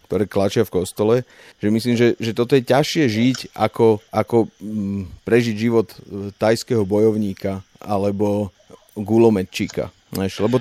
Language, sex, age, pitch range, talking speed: Slovak, male, 40-59, 100-120 Hz, 125 wpm